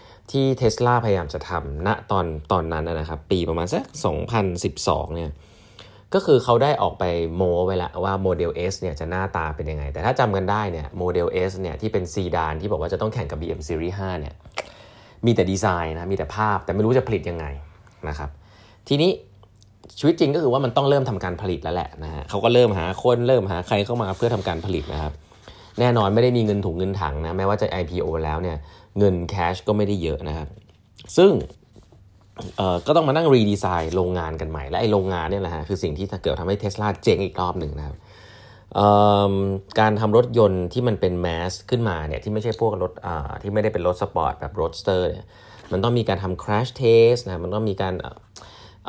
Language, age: Thai, 20-39